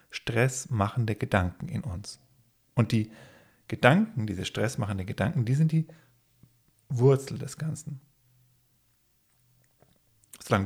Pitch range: 110-145 Hz